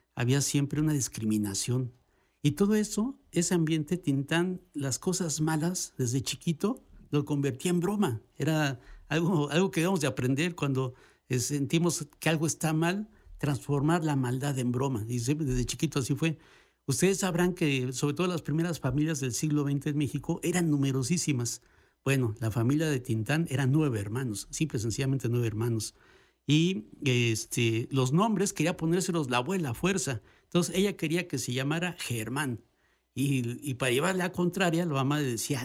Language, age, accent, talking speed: Spanish, 60-79, Mexican, 160 wpm